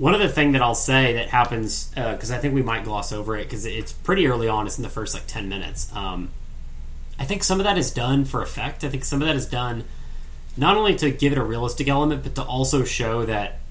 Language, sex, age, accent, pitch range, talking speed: English, male, 30-49, American, 100-135 Hz, 260 wpm